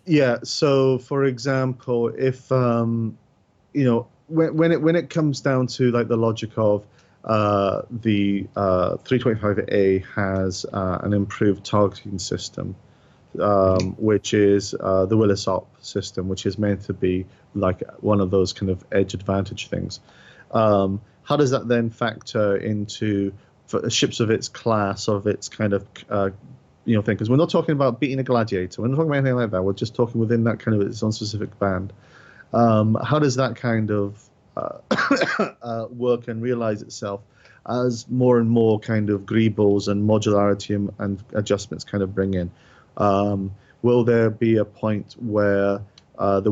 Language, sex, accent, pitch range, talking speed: English, male, British, 100-120 Hz, 170 wpm